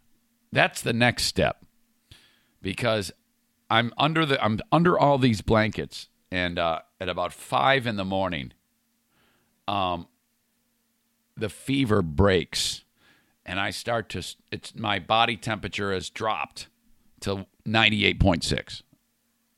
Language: English